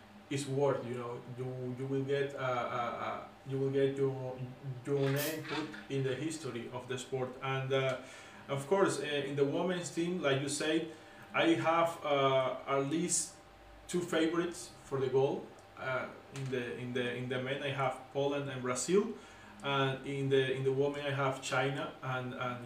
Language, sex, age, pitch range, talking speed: English, male, 20-39, 130-145 Hz, 180 wpm